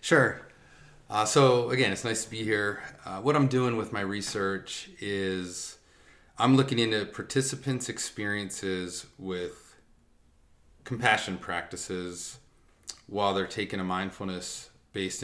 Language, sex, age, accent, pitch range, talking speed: English, male, 30-49, American, 85-105 Hz, 120 wpm